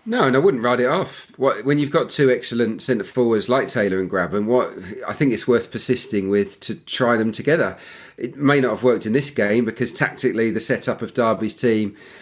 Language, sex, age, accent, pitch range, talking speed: English, male, 40-59, British, 105-125 Hz, 215 wpm